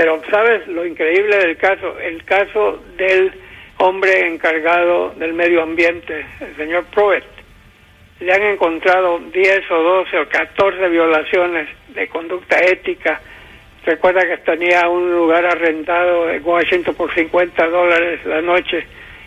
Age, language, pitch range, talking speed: 60-79, English, 165-185 Hz, 130 wpm